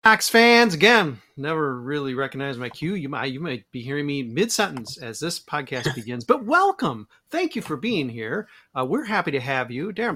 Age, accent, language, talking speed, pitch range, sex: 40-59, American, English, 200 wpm, 130-205 Hz, male